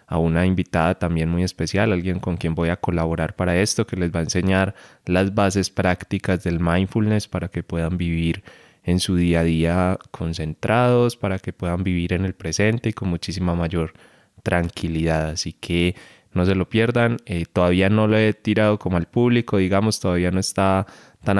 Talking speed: 185 wpm